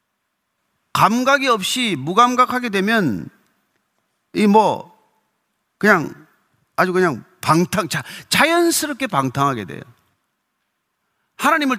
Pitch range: 185-260 Hz